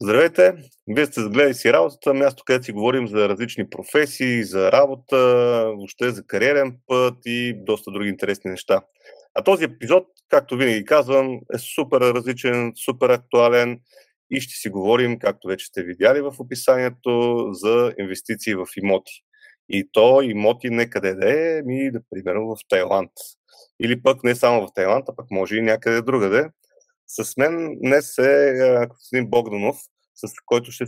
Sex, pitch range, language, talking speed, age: male, 110-135 Hz, Bulgarian, 155 wpm, 30-49